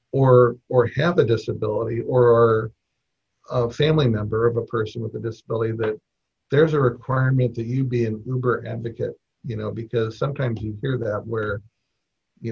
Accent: American